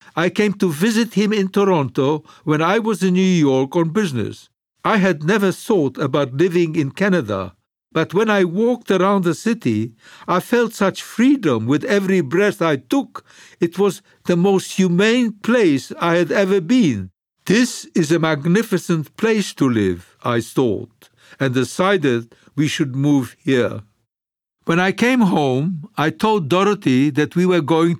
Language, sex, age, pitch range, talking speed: English, male, 60-79, 140-200 Hz, 160 wpm